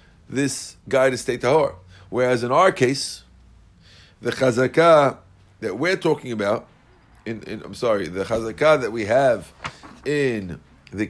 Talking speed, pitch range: 140 wpm, 100-155 Hz